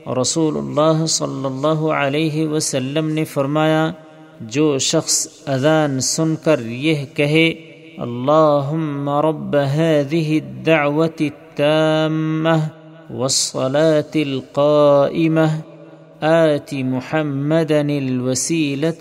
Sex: male